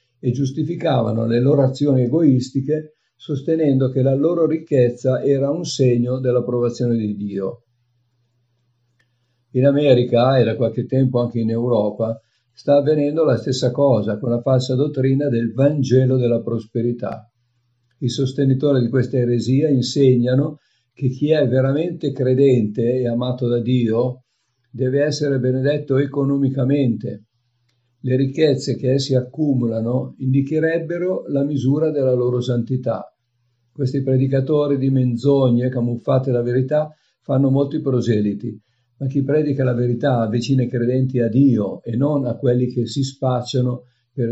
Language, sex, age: Italian, male, 50-69